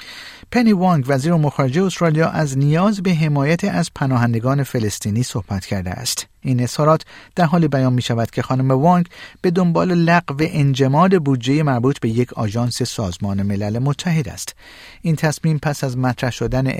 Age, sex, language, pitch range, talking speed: 50-69, male, Persian, 110-155 Hz, 155 wpm